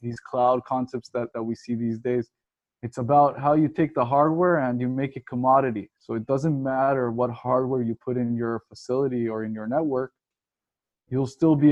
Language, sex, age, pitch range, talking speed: English, male, 20-39, 120-135 Hz, 200 wpm